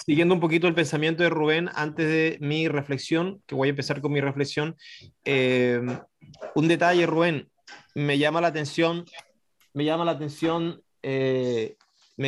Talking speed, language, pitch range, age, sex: 155 wpm, Spanish, 130-165 Hz, 20-39, male